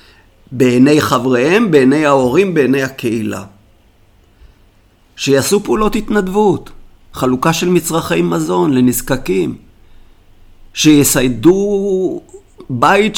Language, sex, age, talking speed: Hebrew, male, 50-69, 75 wpm